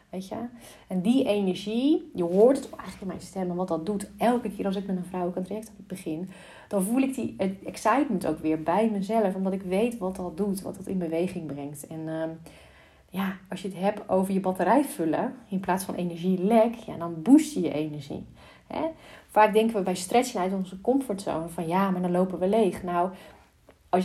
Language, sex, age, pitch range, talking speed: Dutch, female, 30-49, 175-215 Hz, 220 wpm